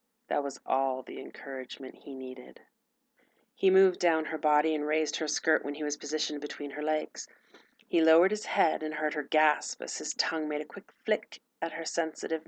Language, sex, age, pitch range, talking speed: English, female, 40-59, 145-165 Hz, 195 wpm